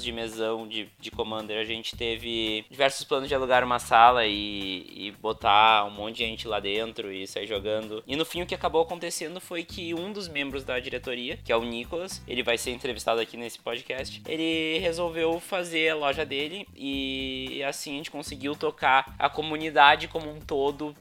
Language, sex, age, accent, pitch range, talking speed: Portuguese, male, 20-39, Brazilian, 110-135 Hz, 195 wpm